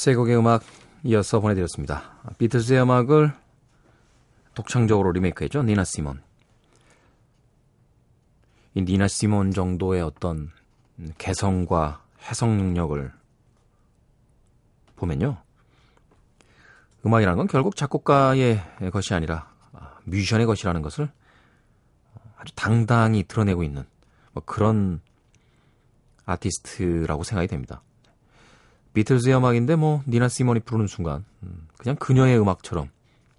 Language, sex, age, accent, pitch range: Korean, male, 40-59, native, 90-120 Hz